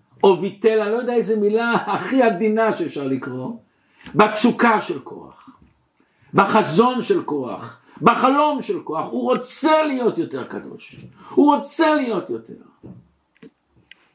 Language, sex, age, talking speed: Hebrew, male, 60-79, 125 wpm